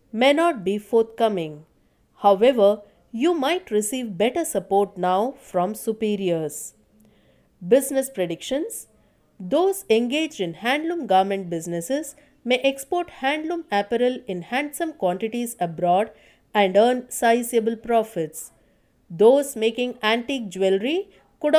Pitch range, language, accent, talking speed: 195-275 Hz, English, Indian, 105 wpm